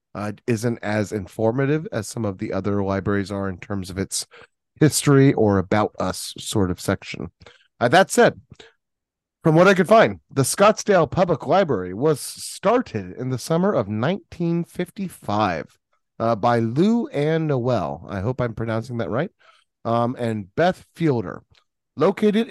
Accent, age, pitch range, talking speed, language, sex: American, 30-49, 115-175 Hz, 150 wpm, English, male